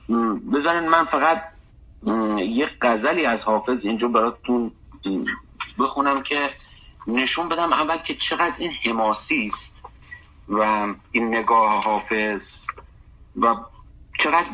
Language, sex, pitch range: English, male, 110-150 Hz